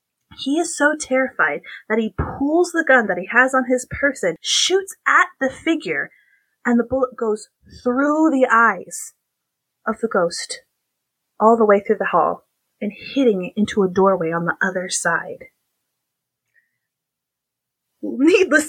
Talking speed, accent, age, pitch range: 150 wpm, American, 30-49, 195-260 Hz